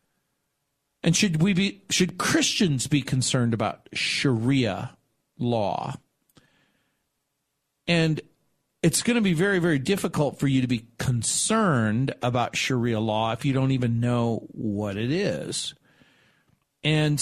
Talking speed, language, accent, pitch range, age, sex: 125 wpm, English, American, 120-160 Hz, 50-69, male